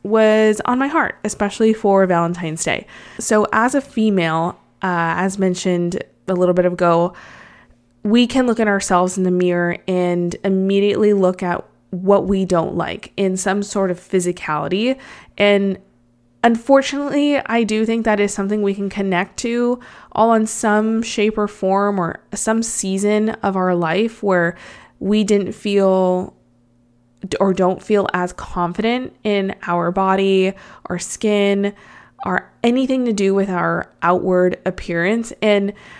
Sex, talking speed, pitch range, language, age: female, 145 wpm, 180-215 Hz, English, 20-39